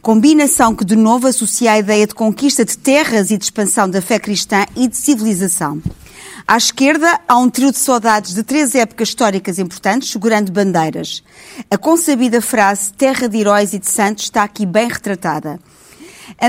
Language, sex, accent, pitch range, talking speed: Portuguese, female, Brazilian, 200-255 Hz, 175 wpm